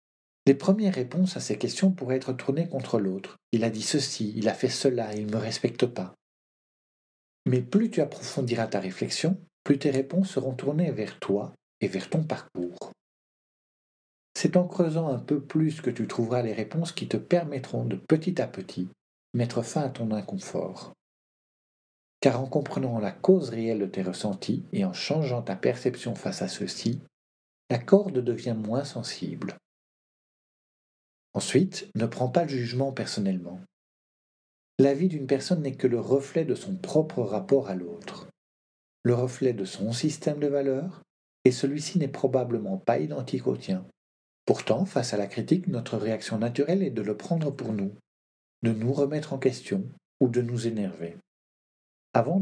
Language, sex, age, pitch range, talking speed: French, male, 50-69, 110-155 Hz, 170 wpm